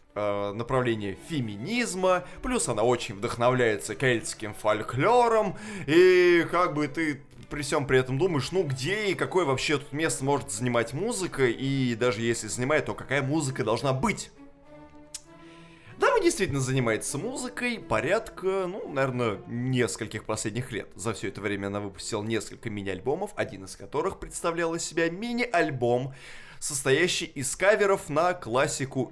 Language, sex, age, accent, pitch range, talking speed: Russian, male, 20-39, native, 115-190 Hz, 140 wpm